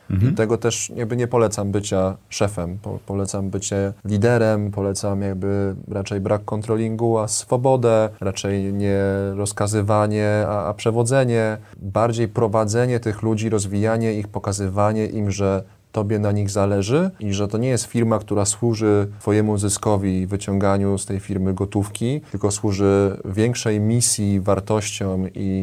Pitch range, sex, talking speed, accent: 100-115 Hz, male, 130 wpm, native